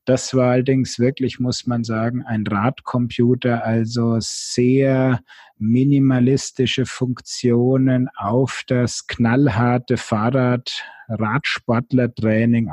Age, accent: 50-69, German